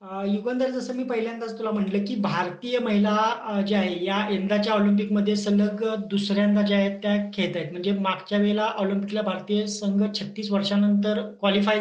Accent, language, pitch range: native, Marathi, 200-230 Hz